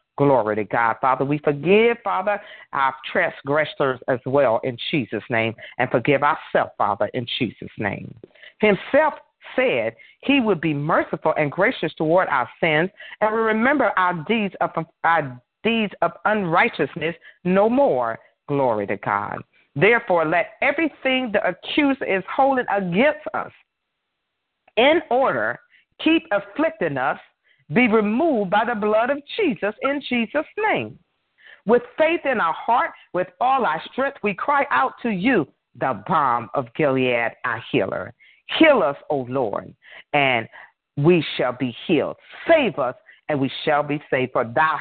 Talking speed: 145 wpm